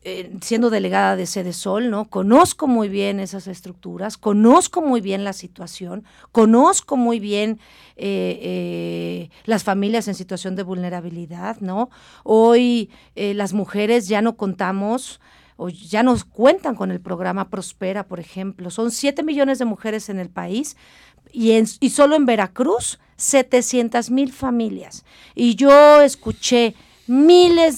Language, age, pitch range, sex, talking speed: Spanish, 40-59, 200-270 Hz, female, 145 wpm